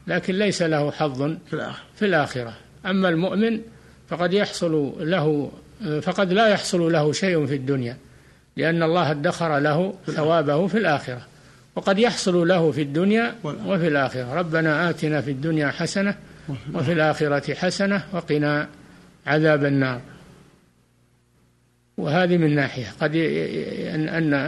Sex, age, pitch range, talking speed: male, 60-79, 145-175 Hz, 120 wpm